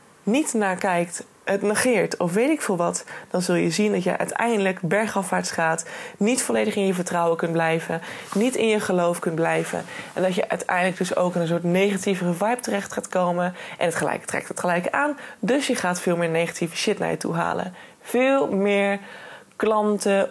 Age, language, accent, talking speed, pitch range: 20-39, Dutch, Dutch, 200 wpm, 170-210 Hz